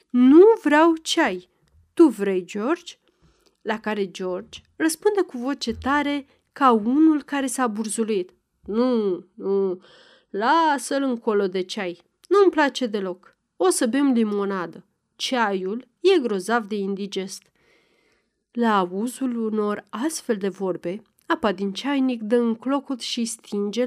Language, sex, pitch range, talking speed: Romanian, female, 205-290 Hz, 125 wpm